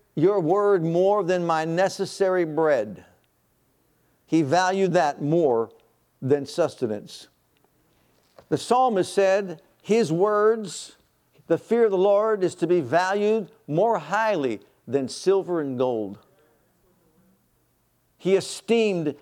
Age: 60-79